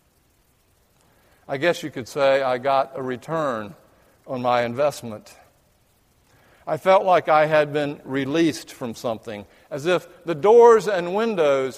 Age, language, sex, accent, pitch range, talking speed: 60-79, English, male, American, 140-200 Hz, 140 wpm